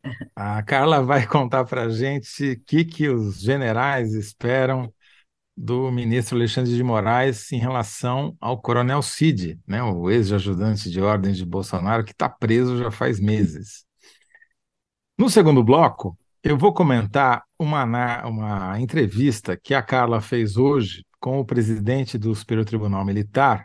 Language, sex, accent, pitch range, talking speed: Portuguese, male, Brazilian, 105-140 Hz, 140 wpm